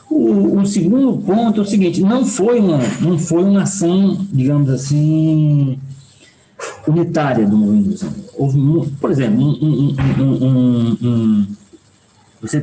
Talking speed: 95 wpm